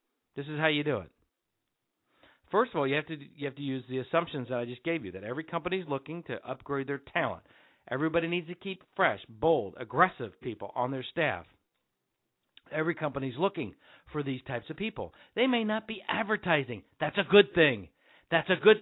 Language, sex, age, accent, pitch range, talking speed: English, male, 50-69, American, 115-165 Hz, 205 wpm